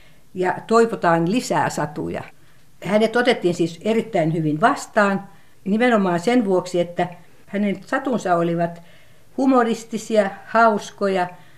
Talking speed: 100 wpm